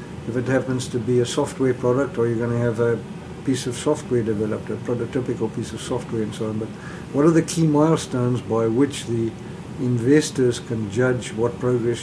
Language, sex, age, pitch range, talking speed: English, male, 60-79, 120-145 Hz, 200 wpm